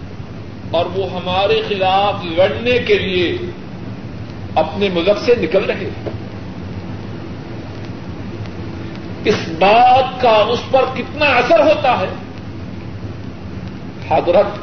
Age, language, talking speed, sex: 50-69, Urdu, 95 wpm, male